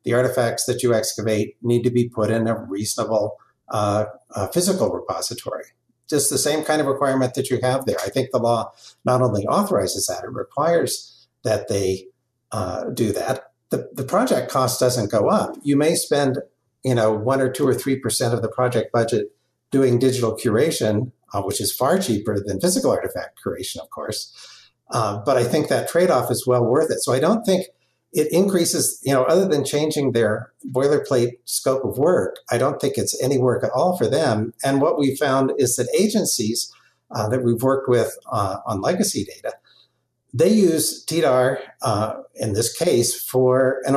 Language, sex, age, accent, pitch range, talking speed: English, male, 50-69, American, 115-135 Hz, 190 wpm